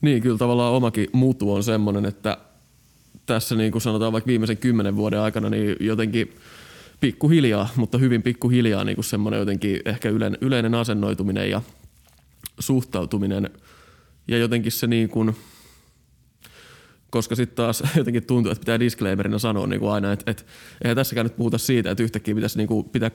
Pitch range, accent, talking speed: 105-120 Hz, native, 160 wpm